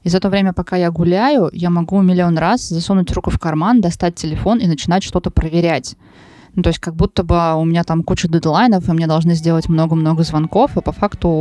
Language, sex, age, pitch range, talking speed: Russian, female, 20-39, 165-190 Hz, 215 wpm